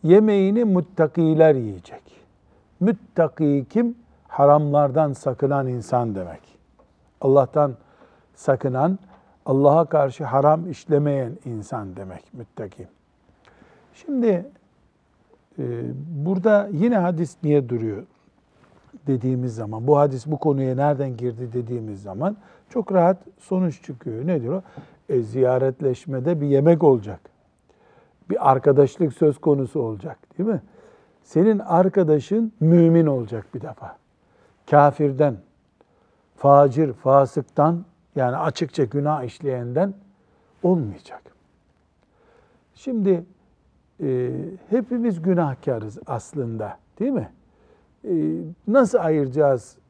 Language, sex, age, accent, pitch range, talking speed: Turkish, male, 60-79, native, 130-175 Hz, 95 wpm